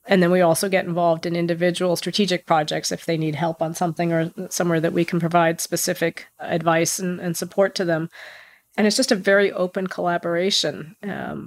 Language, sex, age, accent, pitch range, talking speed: English, female, 40-59, American, 170-185 Hz, 195 wpm